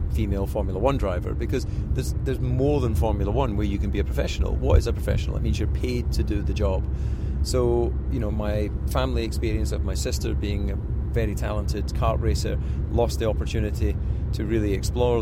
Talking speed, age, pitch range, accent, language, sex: 195 wpm, 40-59, 90-110 Hz, British, English, male